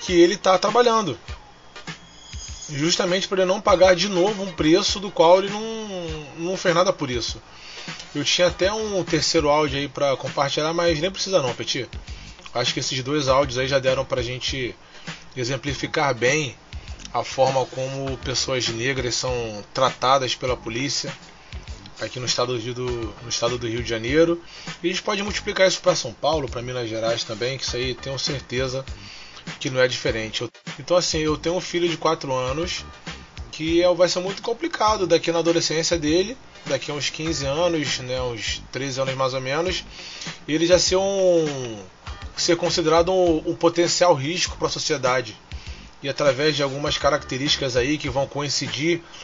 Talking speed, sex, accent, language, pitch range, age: 175 wpm, male, Brazilian, Portuguese, 130-175 Hz, 20-39